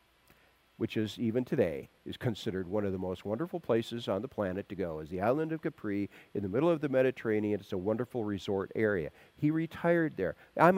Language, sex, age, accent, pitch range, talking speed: English, male, 50-69, American, 135-180 Hz, 205 wpm